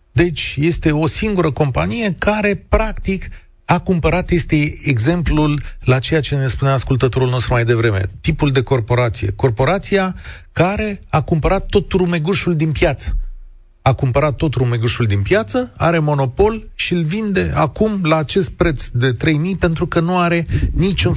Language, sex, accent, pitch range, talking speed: Romanian, male, native, 105-155 Hz, 150 wpm